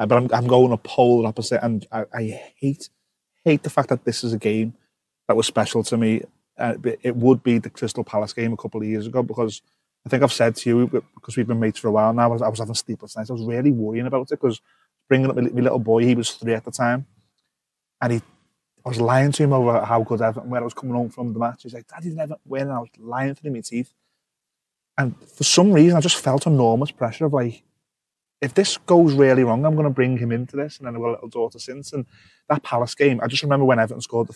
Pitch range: 115-140 Hz